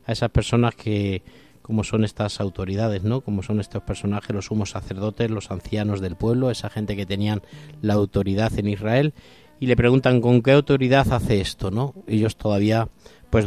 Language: Spanish